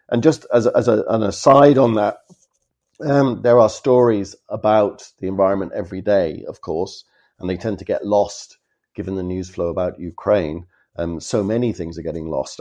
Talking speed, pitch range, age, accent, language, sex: 190 wpm, 95-120 Hz, 50-69, British, English, male